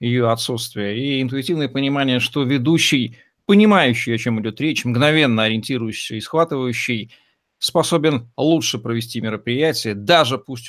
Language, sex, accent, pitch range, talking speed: Russian, male, native, 110-135 Hz, 125 wpm